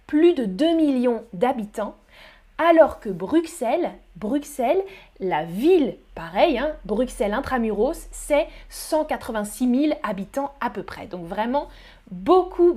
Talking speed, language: 115 wpm, French